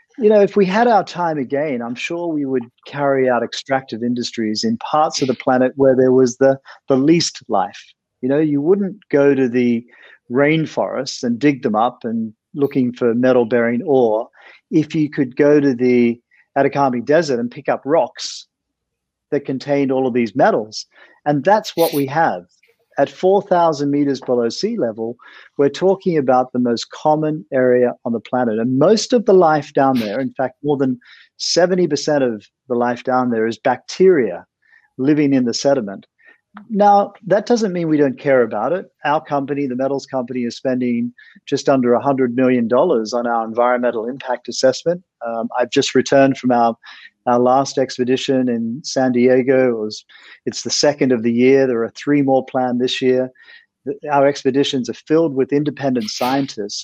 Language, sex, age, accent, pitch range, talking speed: English, male, 40-59, Australian, 125-150 Hz, 175 wpm